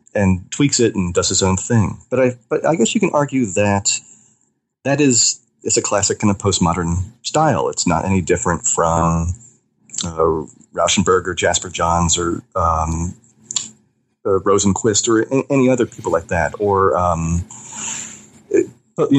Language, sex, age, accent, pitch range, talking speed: English, male, 30-49, American, 90-120 Hz, 150 wpm